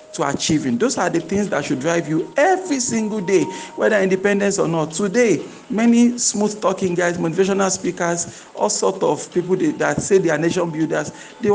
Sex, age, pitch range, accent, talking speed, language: male, 50-69, 180-215 Hz, Nigerian, 180 wpm, English